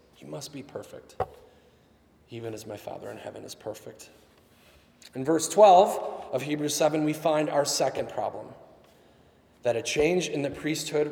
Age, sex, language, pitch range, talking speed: 30-49, male, English, 120-155 Hz, 155 wpm